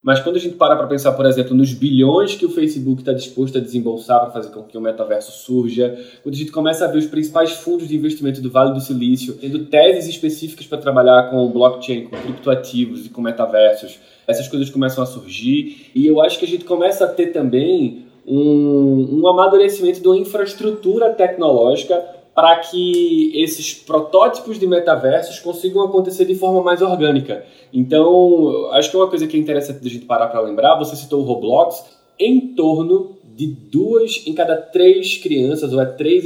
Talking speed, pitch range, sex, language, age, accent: 190 wpm, 130-185 Hz, male, Portuguese, 20-39, Brazilian